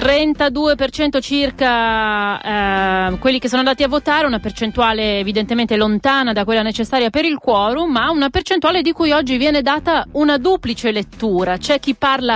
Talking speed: 155 wpm